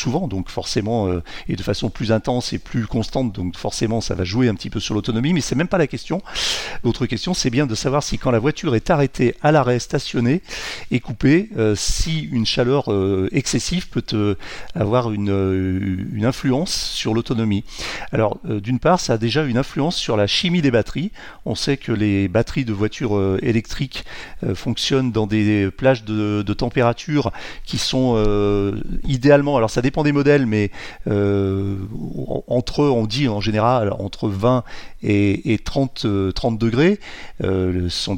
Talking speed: 185 wpm